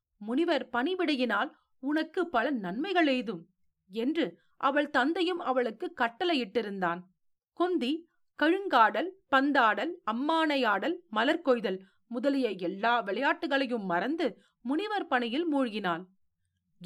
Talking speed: 80 wpm